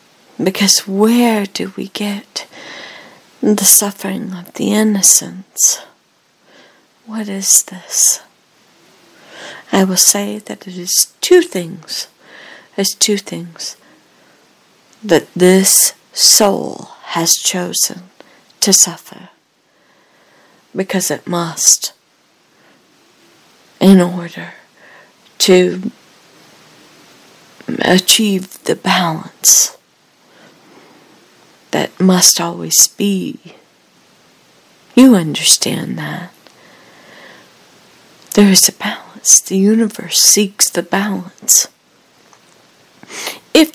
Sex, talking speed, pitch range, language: female, 80 wpm, 185-215 Hz, English